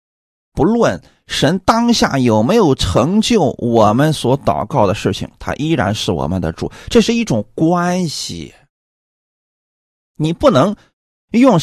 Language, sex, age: Chinese, male, 30-49